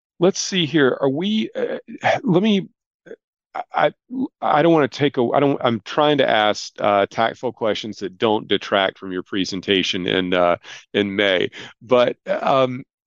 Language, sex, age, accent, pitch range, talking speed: English, male, 40-59, American, 95-125 Hz, 165 wpm